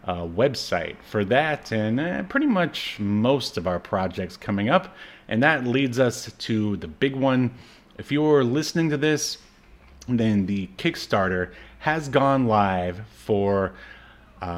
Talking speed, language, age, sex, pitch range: 145 wpm, English, 30-49, male, 100-135 Hz